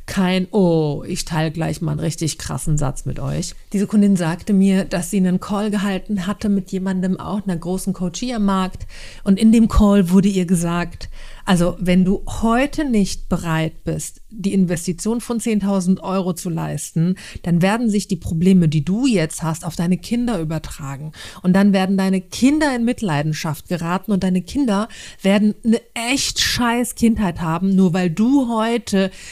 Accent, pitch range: German, 160-205 Hz